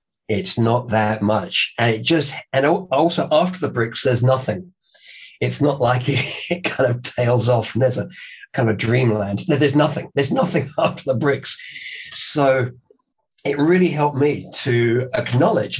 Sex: male